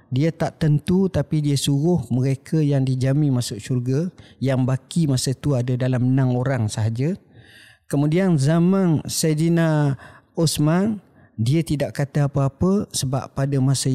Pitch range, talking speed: 115-145 Hz, 135 wpm